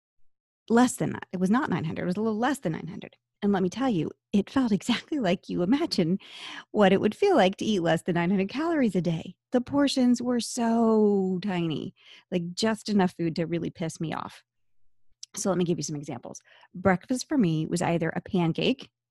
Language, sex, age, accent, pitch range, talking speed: English, female, 30-49, American, 160-210 Hz, 205 wpm